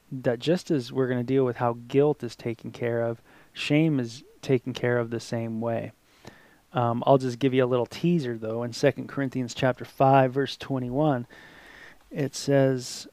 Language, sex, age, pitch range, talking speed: English, male, 20-39, 120-145 Hz, 185 wpm